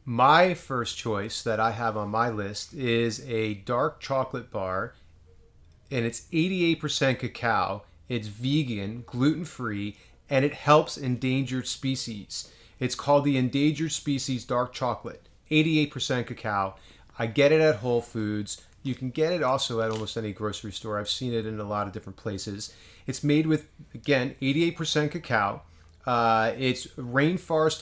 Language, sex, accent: English, male, American